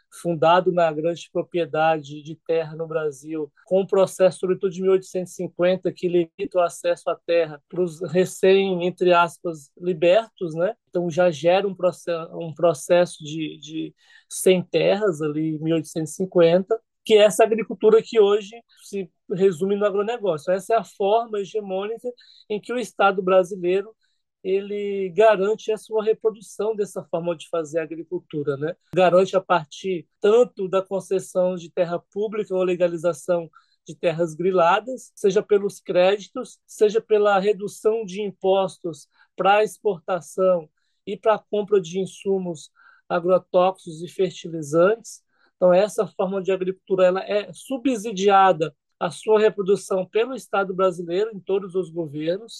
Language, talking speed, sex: Portuguese, 135 wpm, male